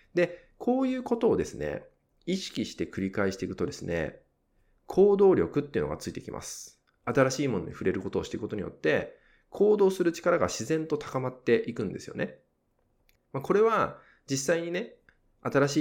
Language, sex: Japanese, male